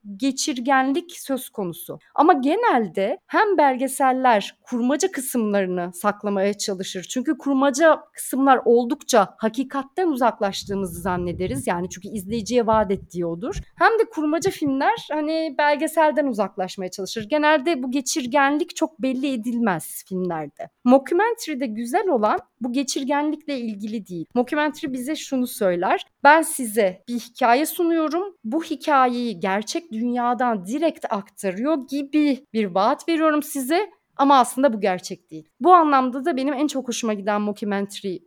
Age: 40-59